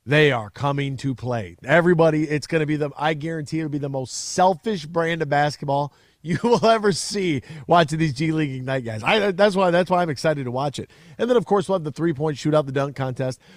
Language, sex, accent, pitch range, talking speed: English, male, American, 130-165 Hz, 240 wpm